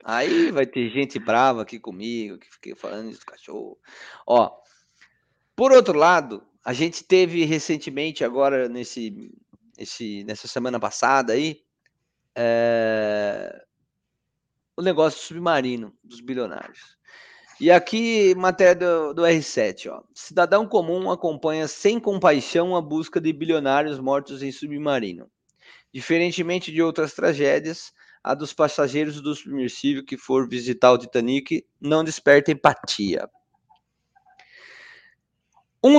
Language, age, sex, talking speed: Portuguese, 20-39, male, 120 wpm